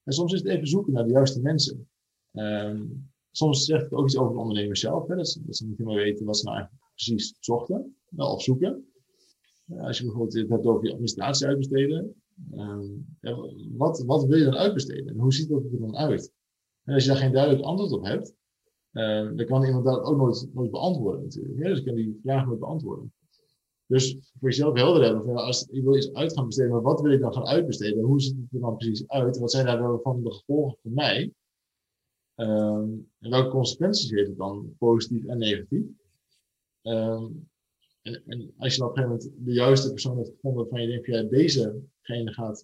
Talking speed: 220 wpm